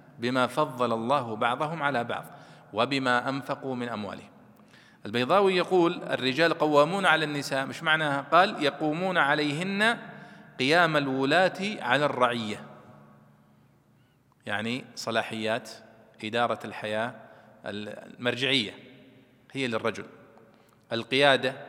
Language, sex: Arabic, male